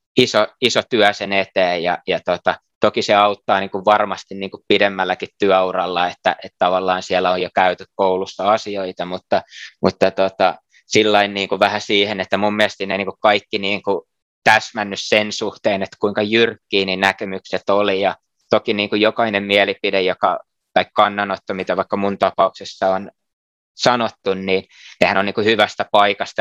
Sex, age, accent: male, 20-39, native